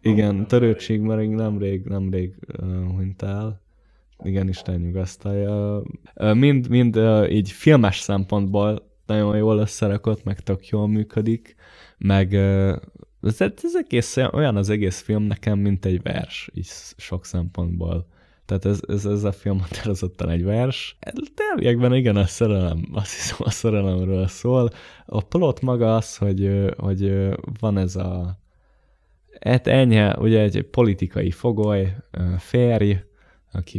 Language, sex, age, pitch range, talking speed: Hungarian, male, 20-39, 90-110 Hz, 140 wpm